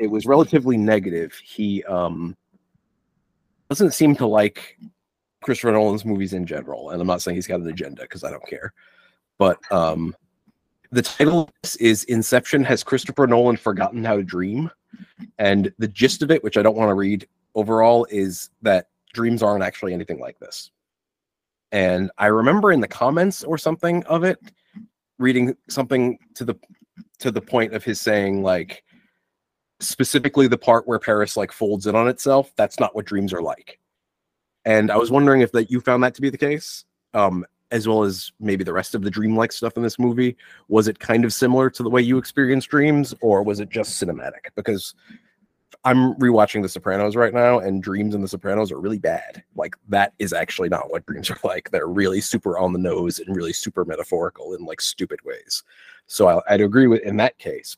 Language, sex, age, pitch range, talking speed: English, male, 30-49, 100-140 Hz, 190 wpm